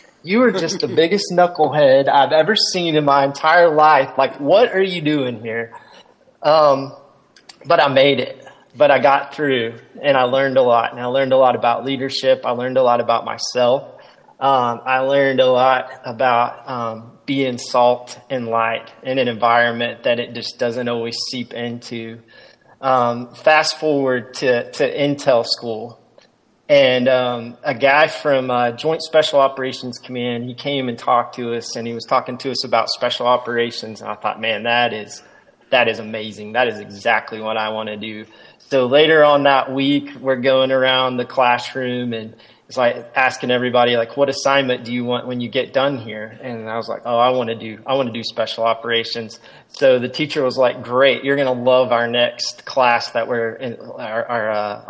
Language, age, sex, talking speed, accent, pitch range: English, 30-49, male, 190 wpm, American, 120-140 Hz